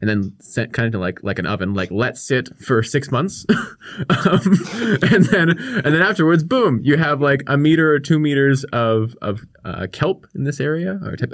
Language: English